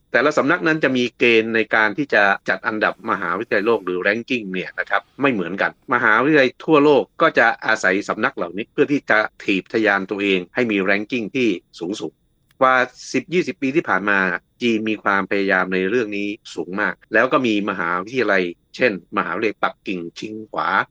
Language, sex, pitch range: Thai, male, 100-125 Hz